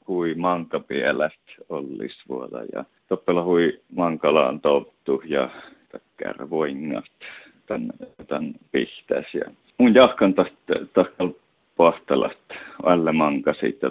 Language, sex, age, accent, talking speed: Finnish, male, 50-69, native, 100 wpm